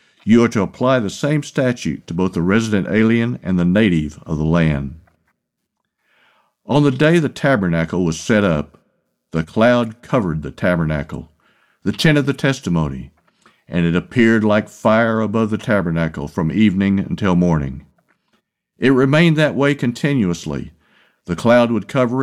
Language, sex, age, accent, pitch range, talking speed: English, male, 50-69, American, 95-130 Hz, 155 wpm